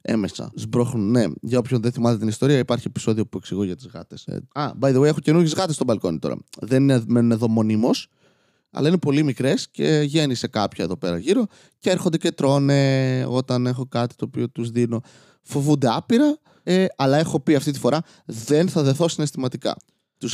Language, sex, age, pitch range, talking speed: Greek, male, 20-39, 115-155 Hz, 190 wpm